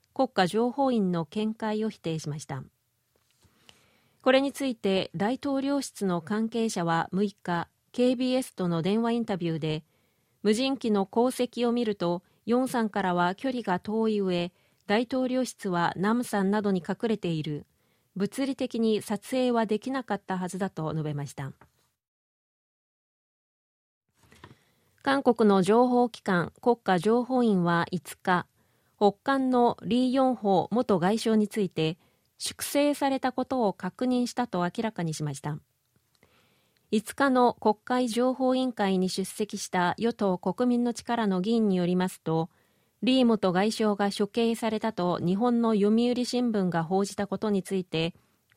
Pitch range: 180-240 Hz